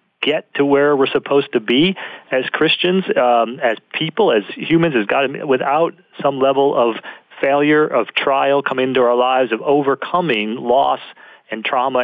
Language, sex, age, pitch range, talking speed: English, male, 40-59, 120-170 Hz, 160 wpm